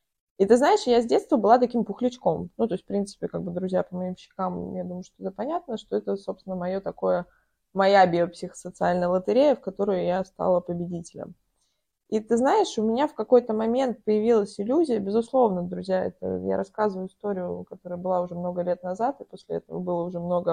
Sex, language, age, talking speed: female, Russian, 20-39, 195 wpm